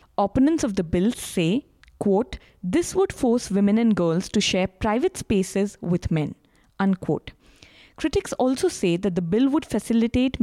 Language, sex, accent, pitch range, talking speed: English, female, Indian, 180-250 Hz, 155 wpm